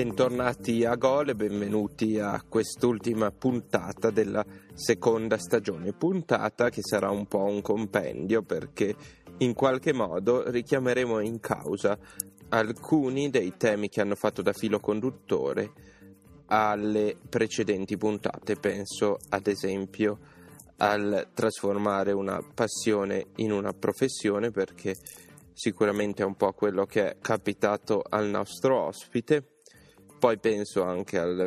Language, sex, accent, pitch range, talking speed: Italian, male, native, 100-115 Hz, 120 wpm